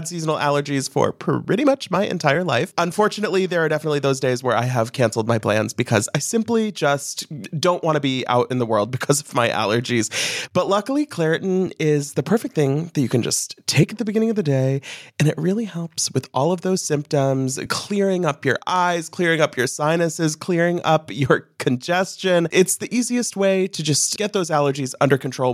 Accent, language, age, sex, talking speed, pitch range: American, English, 30-49, male, 200 wpm, 145-190 Hz